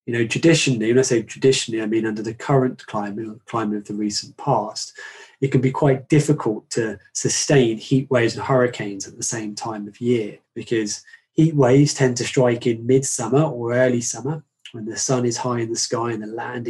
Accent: British